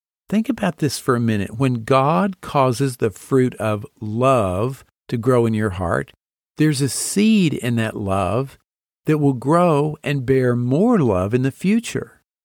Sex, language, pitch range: male, English, 120-155 Hz